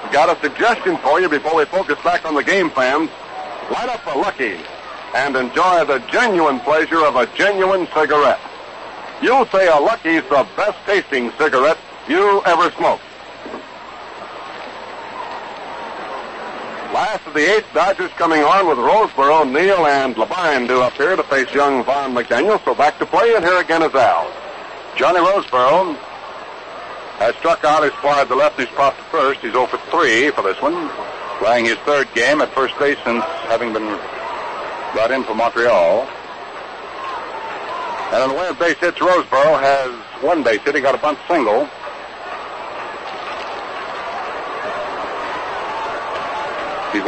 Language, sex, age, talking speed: English, male, 60-79, 150 wpm